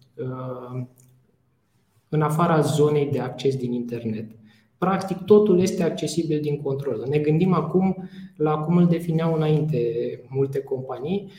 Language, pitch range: Romanian, 130-165 Hz